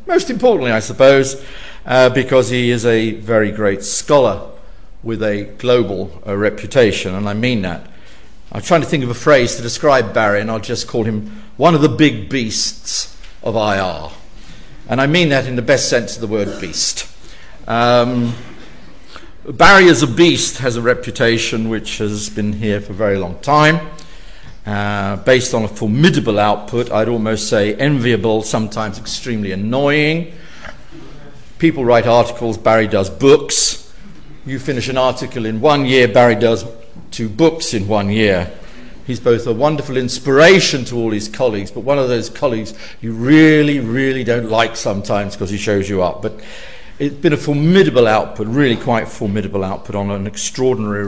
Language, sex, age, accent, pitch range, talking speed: English, male, 50-69, British, 105-135 Hz, 170 wpm